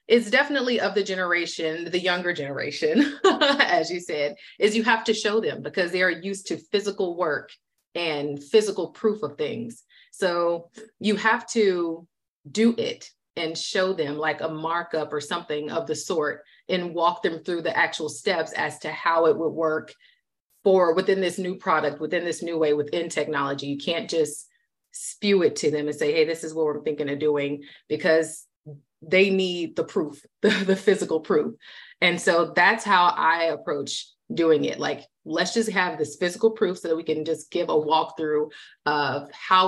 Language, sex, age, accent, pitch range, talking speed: English, female, 30-49, American, 155-195 Hz, 185 wpm